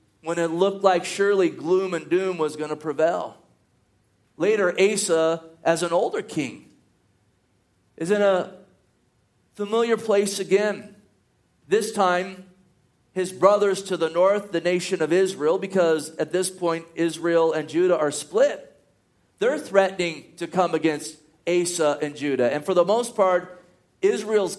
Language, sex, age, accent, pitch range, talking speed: English, male, 40-59, American, 165-210 Hz, 140 wpm